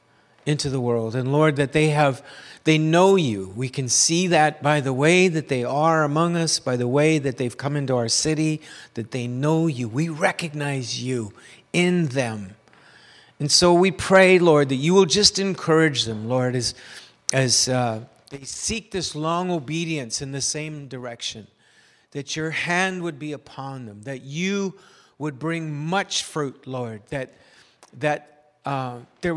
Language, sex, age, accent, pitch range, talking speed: English, male, 50-69, American, 130-170 Hz, 170 wpm